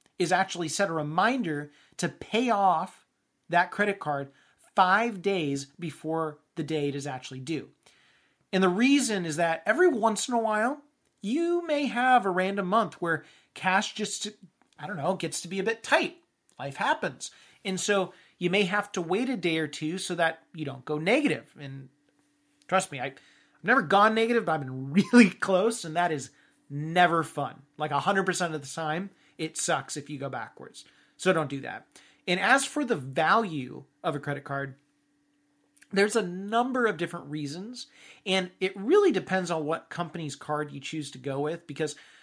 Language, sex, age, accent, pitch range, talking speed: English, male, 30-49, American, 150-200 Hz, 180 wpm